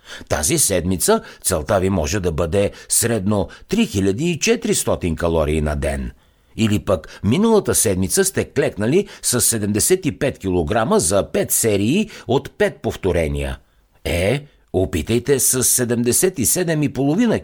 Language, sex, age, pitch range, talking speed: Bulgarian, male, 60-79, 85-135 Hz, 105 wpm